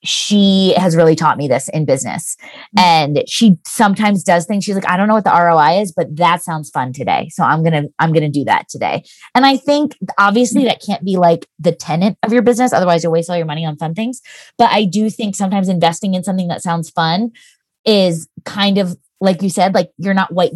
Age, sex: 20-39, female